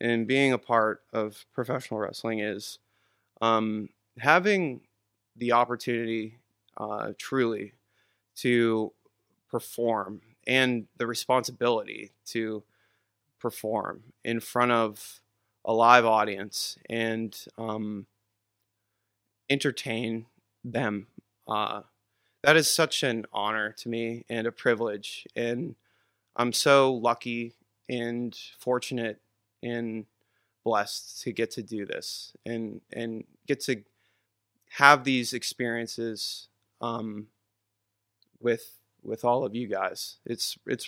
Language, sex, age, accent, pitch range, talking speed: English, male, 20-39, American, 110-120 Hz, 105 wpm